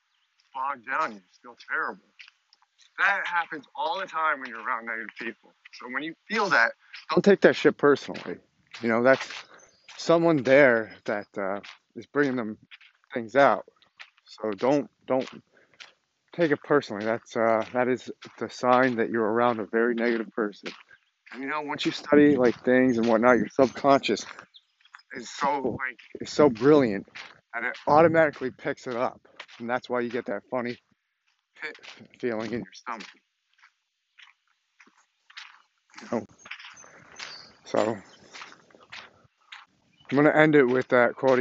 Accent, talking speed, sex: American, 145 wpm, male